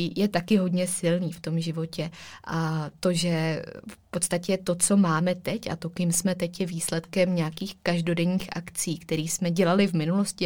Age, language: 20-39, Czech